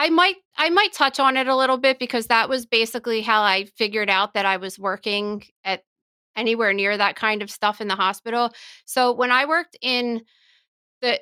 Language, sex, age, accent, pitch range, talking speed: English, female, 30-49, American, 200-230 Hz, 205 wpm